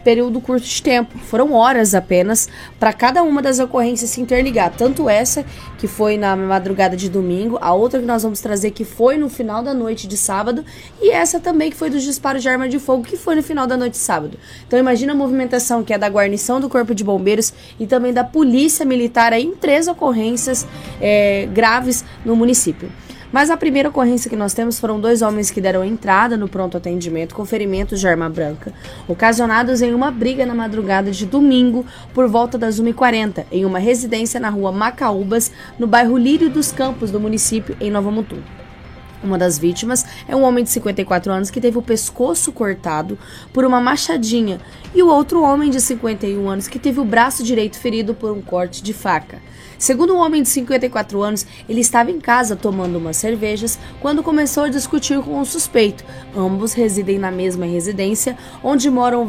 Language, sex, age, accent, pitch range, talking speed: Portuguese, female, 20-39, Brazilian, 205-260 Hz, 190 wpm